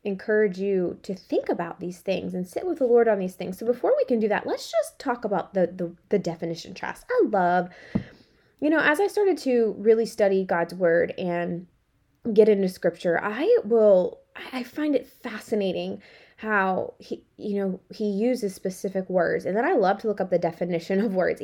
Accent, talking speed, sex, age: American, 200 wpm, female, 20-39